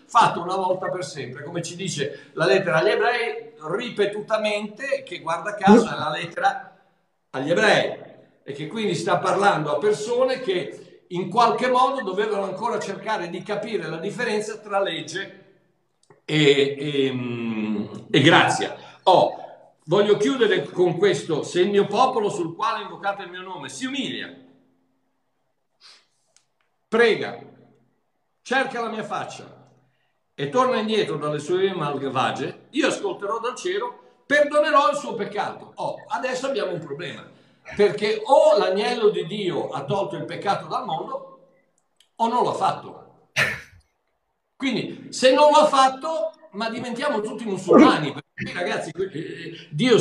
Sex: male